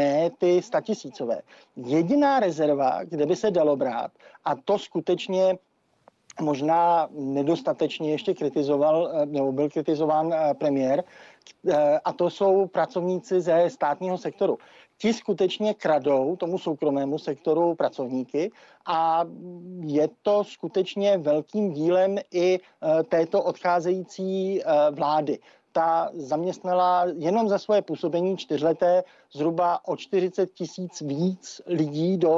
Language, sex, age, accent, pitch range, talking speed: Czech, male, 50-69, native, 155-190 Hz, 110 wpm